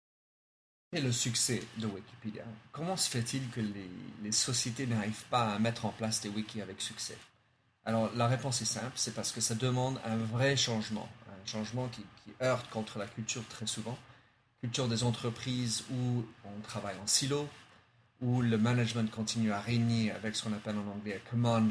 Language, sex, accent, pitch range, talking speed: French, male, French, 110-125 Hz, 190 wpm